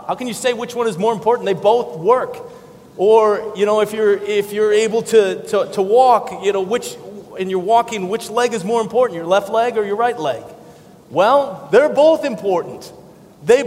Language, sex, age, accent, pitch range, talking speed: English, male, 30-49, American, 165-215 Hz, 205 wpm